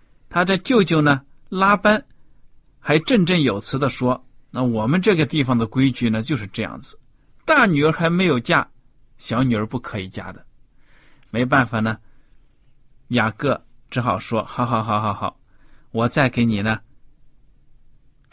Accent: native